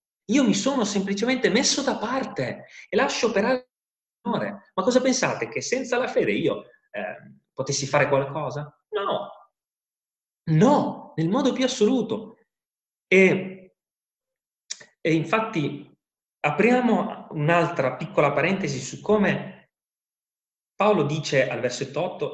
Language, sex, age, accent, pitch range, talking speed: Italian, male, 30-49, native, 150-220 Hz, 115 wpm